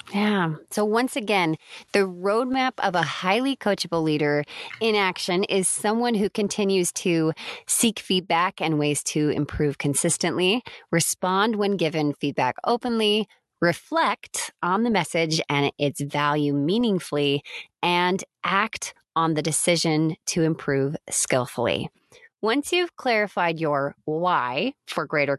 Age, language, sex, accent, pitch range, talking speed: 20-39, English, female, American, 155-210 Hz, 125 wpm